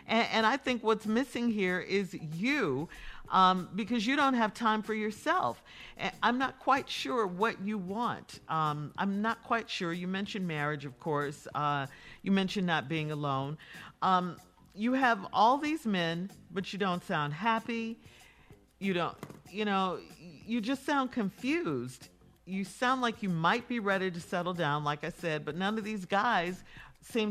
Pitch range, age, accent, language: 165-225 Hz, 50-69, American, English